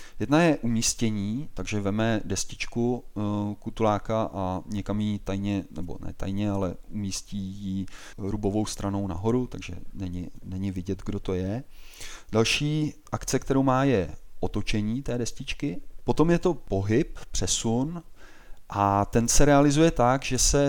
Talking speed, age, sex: 135 wpm, 30-49, male